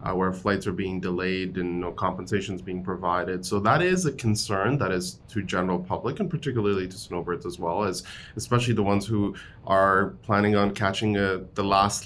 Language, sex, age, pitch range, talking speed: English, male, 20-39, 90-110 Hz, 195 wpm